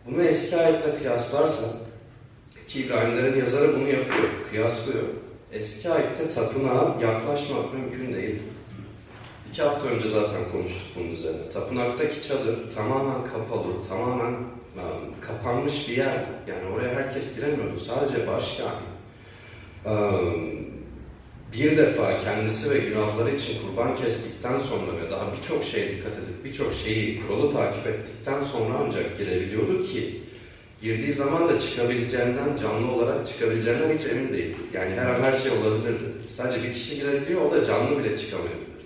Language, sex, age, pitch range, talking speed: Turkish, male, 40-59, 110-140 Hz, 135 wpm